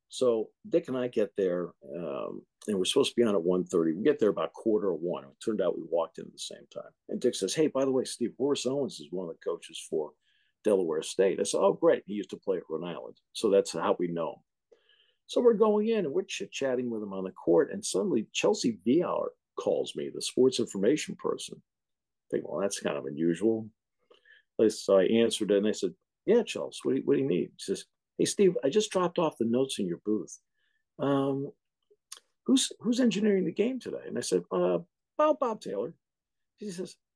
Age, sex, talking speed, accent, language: 50-69, male, 230 wpm, American, English